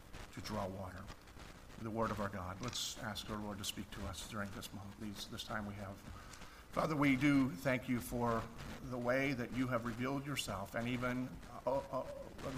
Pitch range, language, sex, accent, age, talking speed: 105-135 Hz, English, male, American, 50-69, 190 wpm